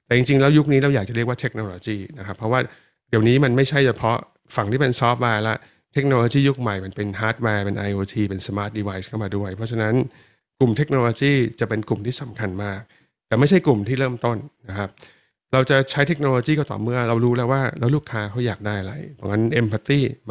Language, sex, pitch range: Thai, male, 105-130 Hz